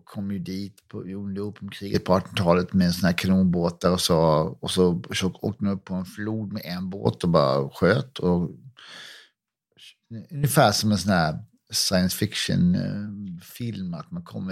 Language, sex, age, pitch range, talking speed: English, male, 50-69, 90-135 Hz, 160 wpm